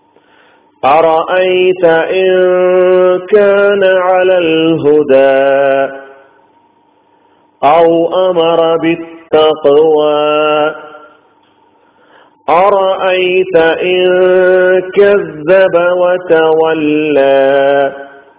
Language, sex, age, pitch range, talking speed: Malayalam, male, 40-59, 150-190 Hz, 40 wpm